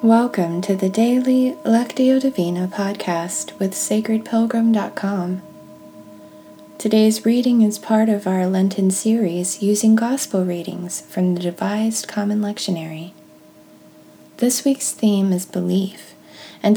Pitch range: 185-220 Hz